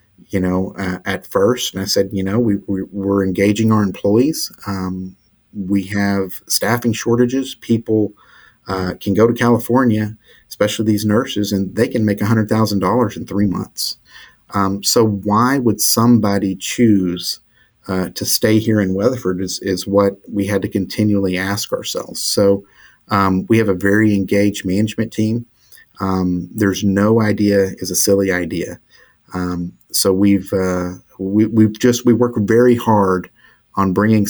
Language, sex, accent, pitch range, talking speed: English, male, American, 95-115 Hz, 155 wpm